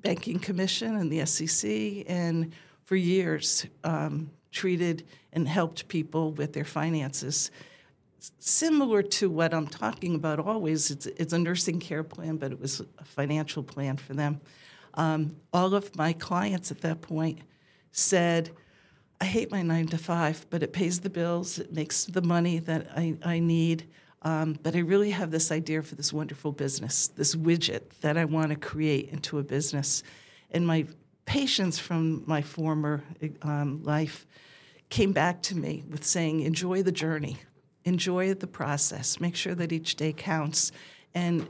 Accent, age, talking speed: American, 50-69, 165 wpm